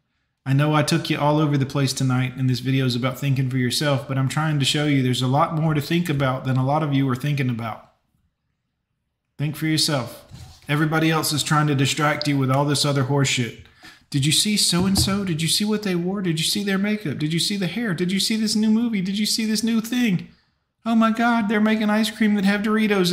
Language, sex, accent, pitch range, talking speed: English, male, American, 145-210 Hz, 250 wpm